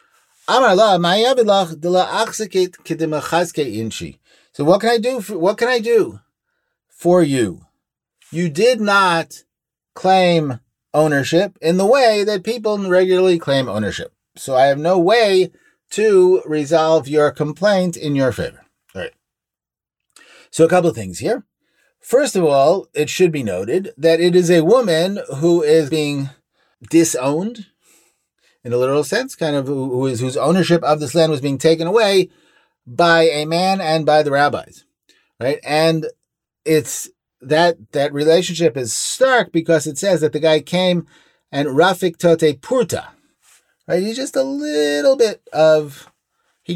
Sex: male